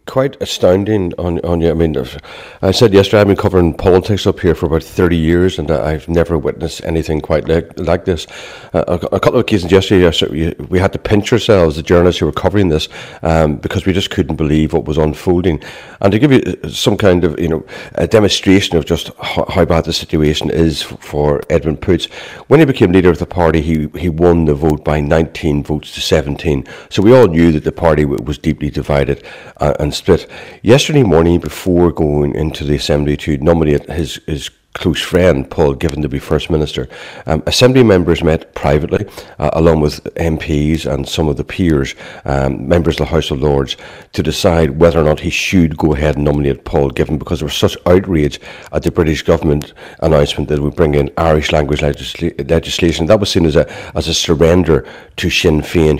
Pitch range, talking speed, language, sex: 75-90 Hz, 210 wpm, English, male